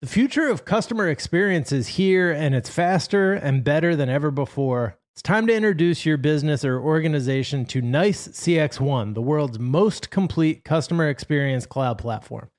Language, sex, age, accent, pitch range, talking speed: English, male, 30-49, American, 135-180 Hz, 160 wpm